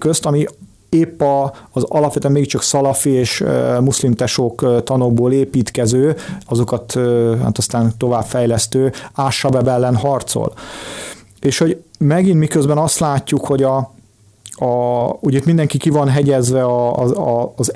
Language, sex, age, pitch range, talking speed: Hungarian, male, 40-59, 125-150 Hz, 140 wpm